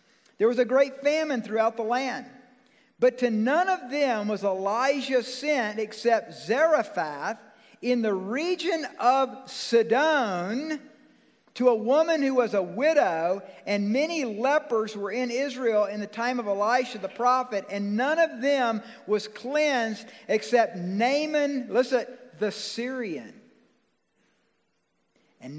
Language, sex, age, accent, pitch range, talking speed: English, male, 50-69, American, 210-260 Hz, 130 wpm